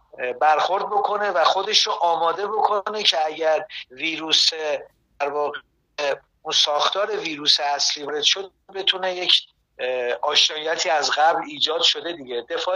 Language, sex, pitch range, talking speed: Persian, male, 145-190 Hz, 120 wpm